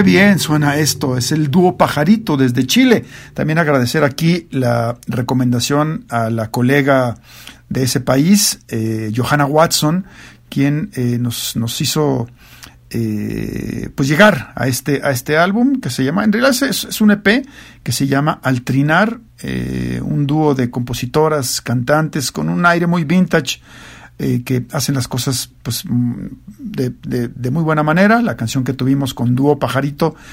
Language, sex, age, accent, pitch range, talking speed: Spanish, male, 50-69, Mexican, 125-165 Hz, 160 wpm